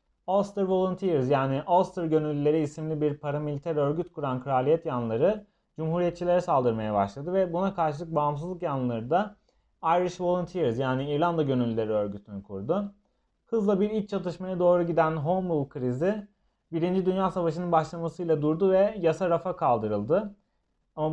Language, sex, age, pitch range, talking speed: Turkish, male, 30-49, 140-180 Hz, 135 wpm